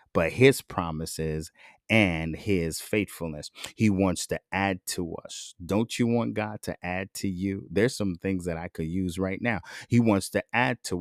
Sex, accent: male, American